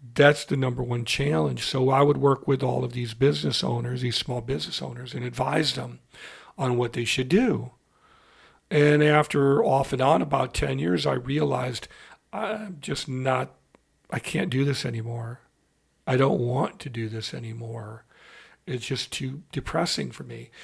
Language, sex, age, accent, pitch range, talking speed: English, male, 50-69, American, 125-145 Hz, 170 wpm